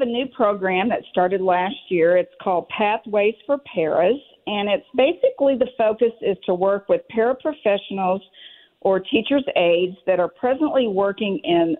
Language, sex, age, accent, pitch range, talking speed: English, female, 50-69, American, 180-240 Hz, 155 wpm